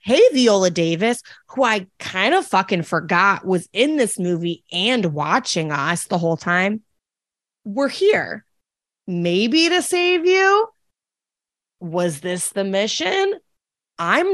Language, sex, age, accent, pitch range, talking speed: English, female, 20-39, American, 180-280 Hz, 125 wpm